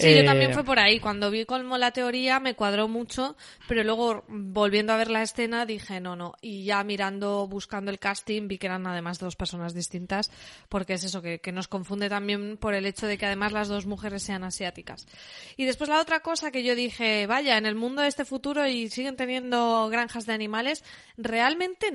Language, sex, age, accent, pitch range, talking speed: Spanish, female, 20-39, Spanish, 205-250 Hz, 215 wpm